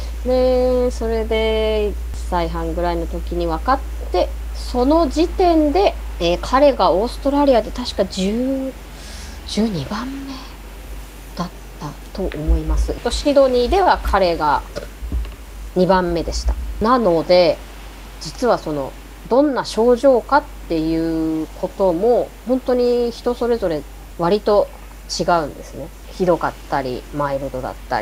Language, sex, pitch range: Japanese, female, 150-255 Hz